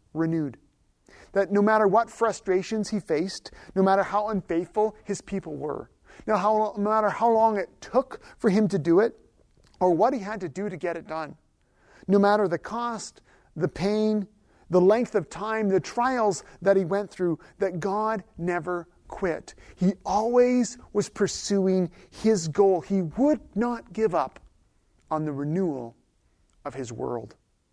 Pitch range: 145-205 Hz